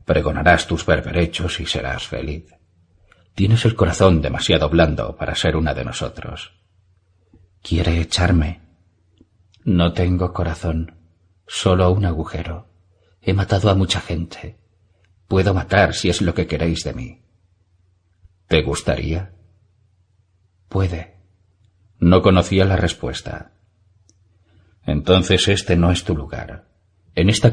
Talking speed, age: 115 wpm, 40-59